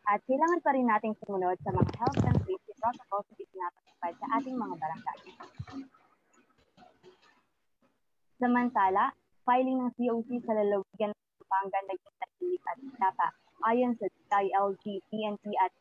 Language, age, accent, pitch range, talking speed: Filipino, 20-39, native, 190-245 Hz, 125 wpm